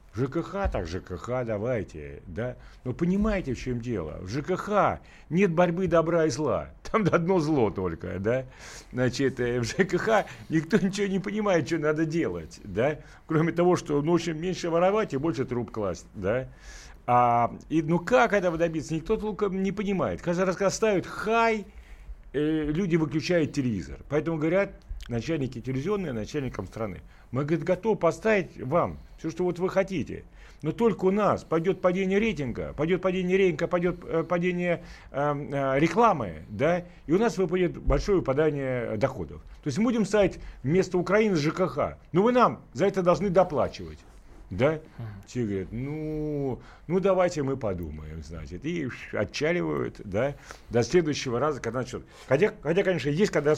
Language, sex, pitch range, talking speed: Russian, male, 125-185 Hz, 155 wpm